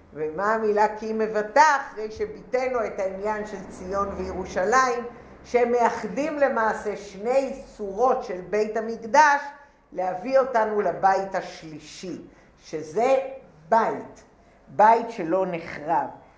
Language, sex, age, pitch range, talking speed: English, female, 50-69, 205-255 Hz, 105 wpm